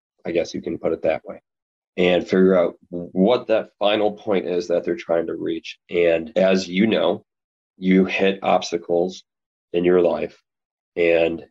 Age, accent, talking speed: 20-39, American, 165 wpm